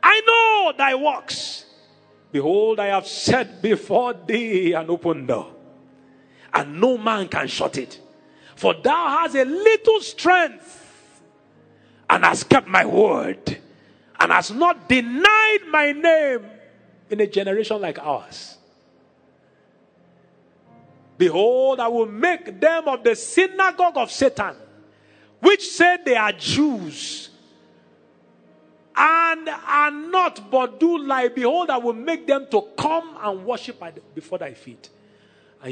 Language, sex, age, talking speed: English, male, 40-59, 130 wpm